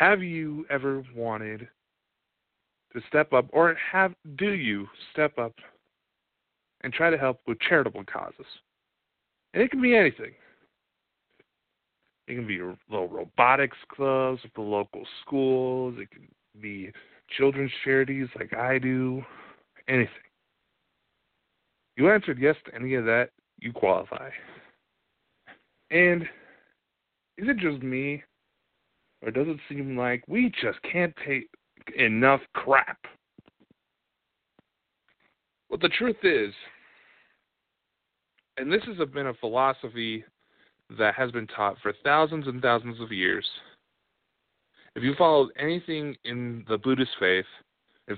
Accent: American